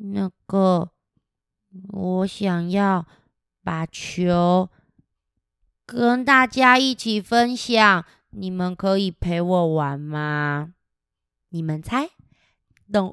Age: 20-39